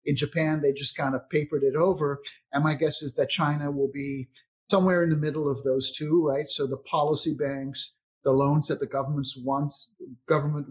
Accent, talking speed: American, 200 wpm